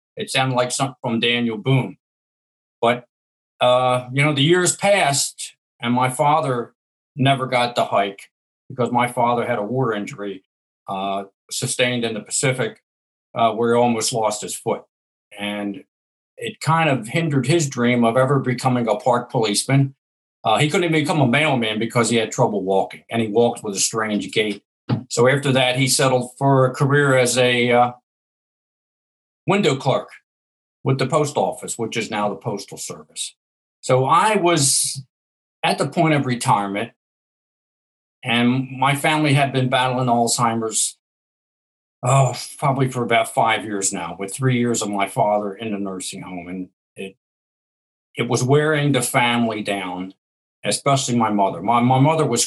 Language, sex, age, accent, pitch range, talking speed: English, male, 50-69, American, 105-135 Hz, 160 wpm